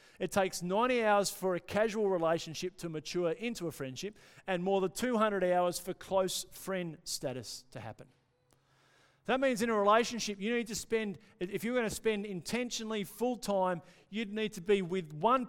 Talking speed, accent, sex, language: 180 wpm, Australian, male, English